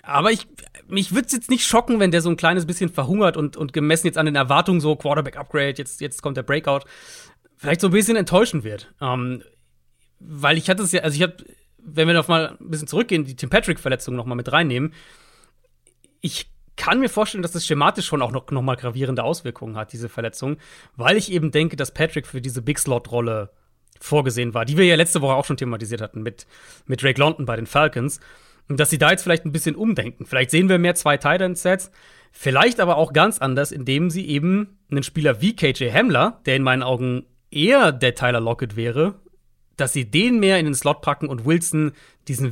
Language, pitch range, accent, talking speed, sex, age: German, 130-170 Hz, German, 210 wpm, male, 30-49